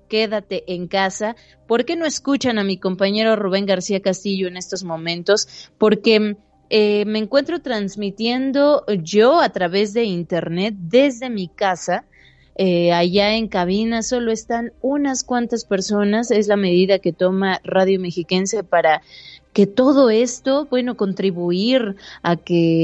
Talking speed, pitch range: 140 wpm, 180-220 Hz